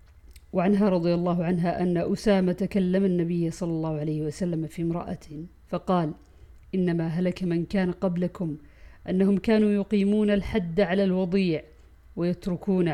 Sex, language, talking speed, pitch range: female, Arabic, 125 wpm, 165-210 Hz